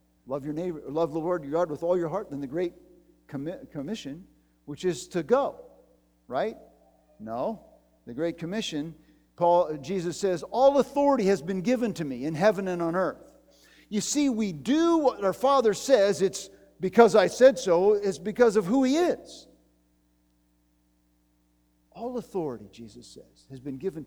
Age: 50-69